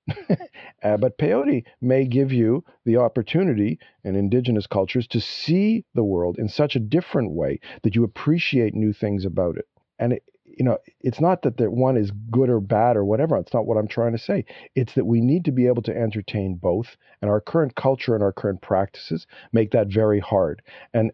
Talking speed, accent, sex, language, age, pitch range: 205 wpm, American, male, English, 50-69, 100-125 Hz